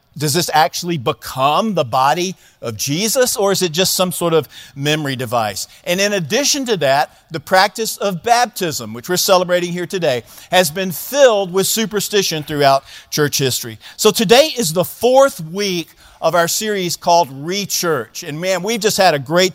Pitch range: 140-195 Hz